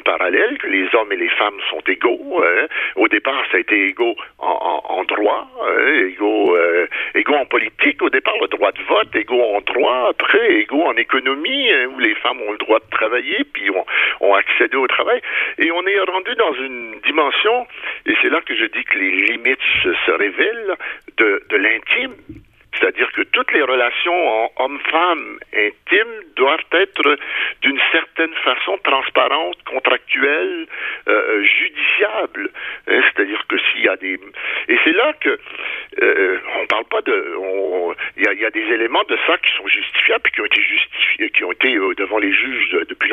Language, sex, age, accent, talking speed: French, male, 60-79, French, 190 wpm